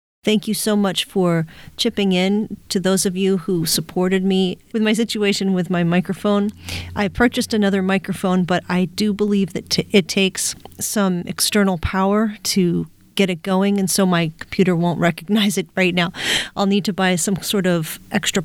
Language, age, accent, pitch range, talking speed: English, 40-59, American, 180-210 Hz, 180 wpm